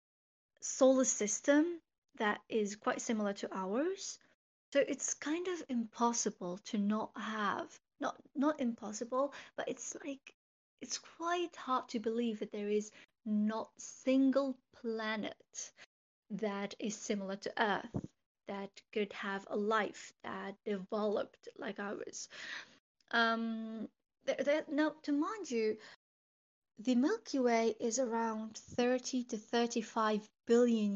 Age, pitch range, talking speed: 30-49, 210-265 Hz, 120 wpm